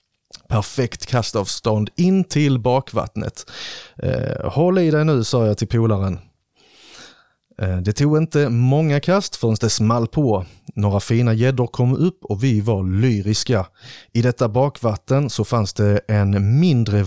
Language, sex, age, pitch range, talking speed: Swedish, male, 30-49, 110-145 Hz, 150 wpm